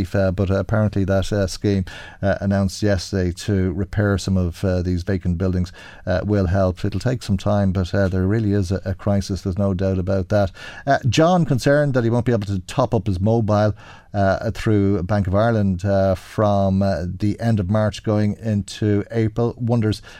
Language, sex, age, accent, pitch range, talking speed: English, male, 40-59, Irish, 100-115 Hz, 195 wpm